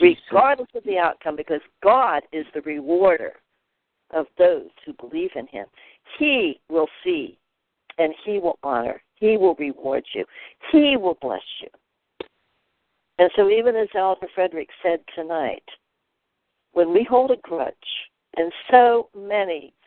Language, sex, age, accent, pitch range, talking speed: English, female, 60-79, American, 170-265 Hz, 140 wpm